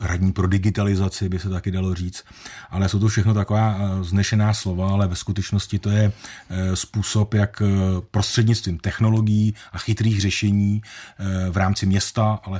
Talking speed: 150 wpm